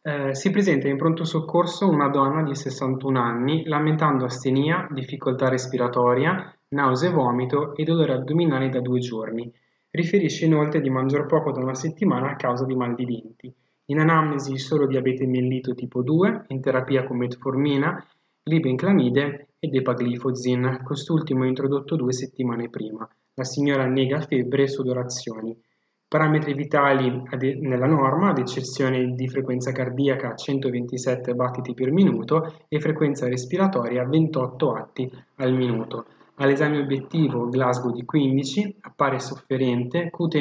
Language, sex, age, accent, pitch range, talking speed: Italian, male, 20-39, native, 125-155 Hz, 135 wpm